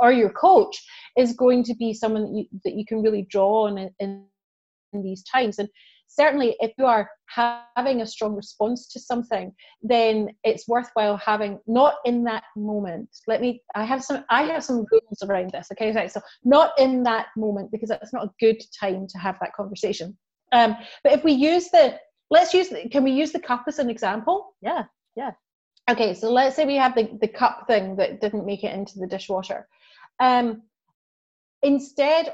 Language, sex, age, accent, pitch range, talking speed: English, female, 30-49, British, 210-260 Hz, 185 wpm